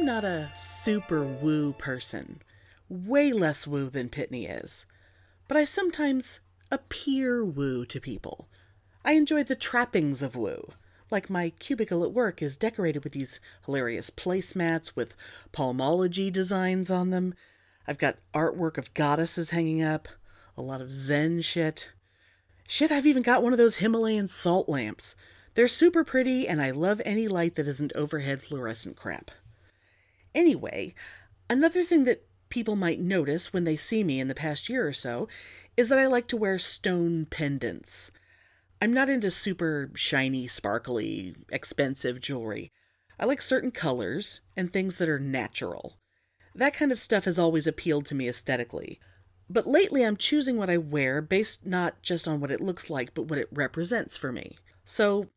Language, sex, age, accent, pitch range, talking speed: English, female, 40-59, American, 130-210 Hz, 160 wpm